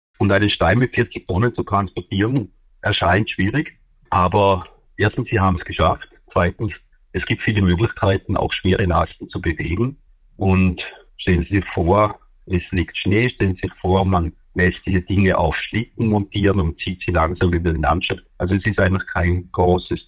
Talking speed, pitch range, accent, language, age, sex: 175 wpm, 85-100 Hz, German, German, 50-69, male